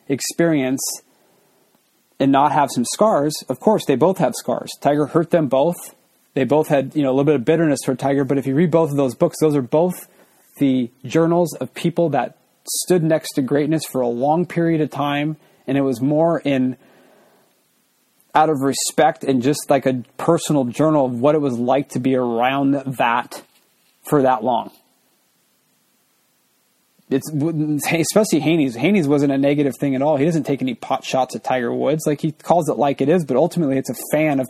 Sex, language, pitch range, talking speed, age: male, English, 135-165 Hz, 195 wpm, 30-49